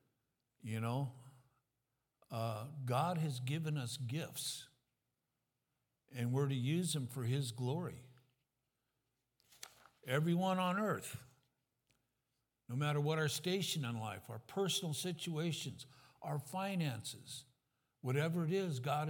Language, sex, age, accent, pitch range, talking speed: English, male, 60-79, American, 125-145 Hz, 110 wpm